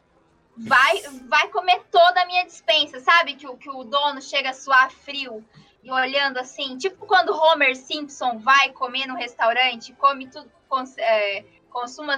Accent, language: Brazilian, Portuguese